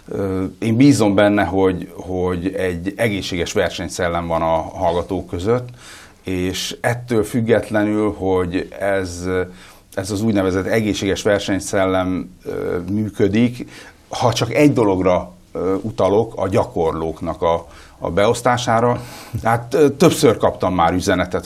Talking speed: 105 wpm